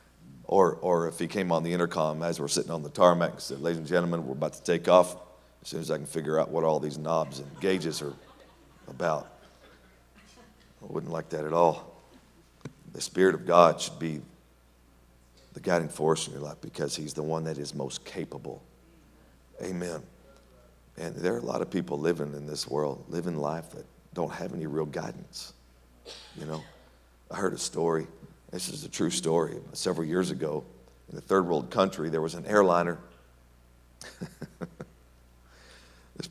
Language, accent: English, American